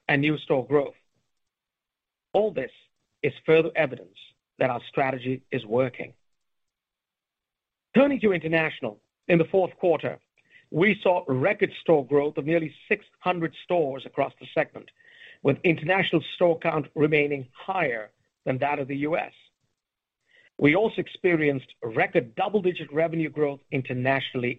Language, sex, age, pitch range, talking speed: English, male, 50-69, 140-180 Hz, 125 wpm